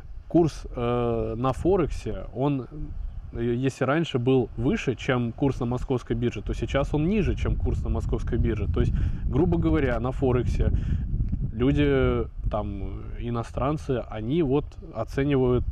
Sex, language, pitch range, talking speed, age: male, Russian, 115-135 Hz, 125 wpm, 20-39